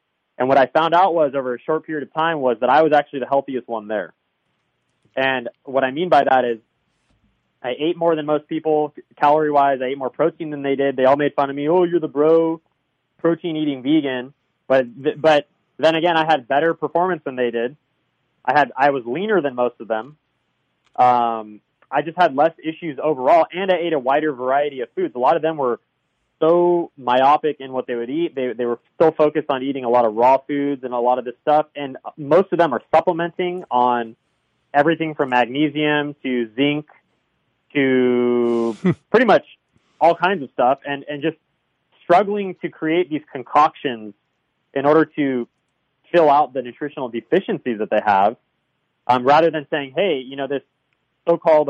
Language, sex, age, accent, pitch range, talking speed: English, male, 20-39, American, 125-160 Hz, 195 wpm